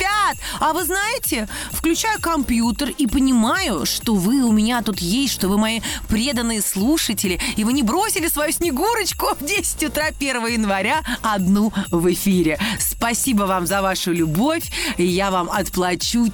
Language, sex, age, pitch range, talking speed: Russian, female, 30-49, 195-270 Hz, 145 wpm